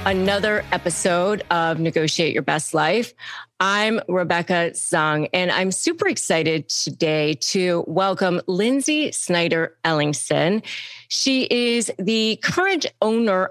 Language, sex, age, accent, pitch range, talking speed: English, female, 30-49, American, 160-205 Hz, 110 wpm